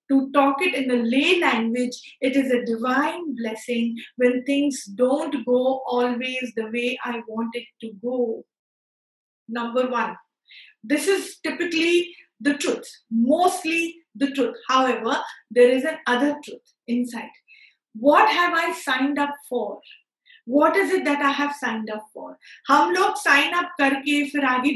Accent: native